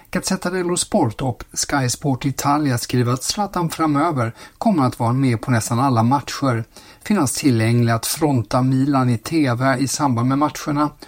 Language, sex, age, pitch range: Swedish, male, 50-69, 115-135 Hz